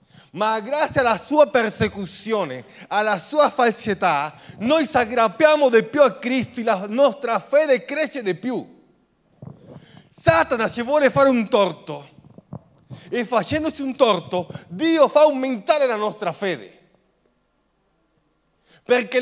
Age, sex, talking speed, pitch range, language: 40-59, male, 120 wpm, 175-240 Hz, Italian